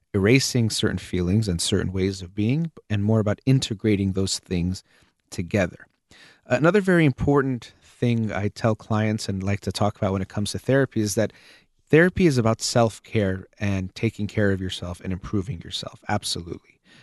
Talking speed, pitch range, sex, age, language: 165 wpm, 100-125 Hz, male, 30-49, English